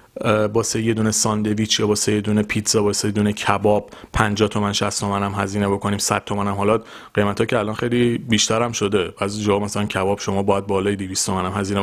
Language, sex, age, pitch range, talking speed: Persian, male, 30-49, 100-125 Hz, 220 wpm